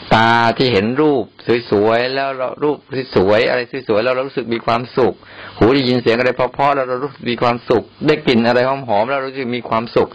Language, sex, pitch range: Thai, male, 105-125 Hz